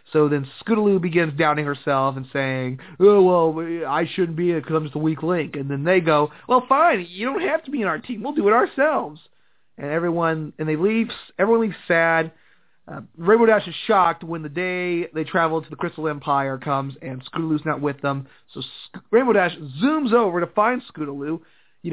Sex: male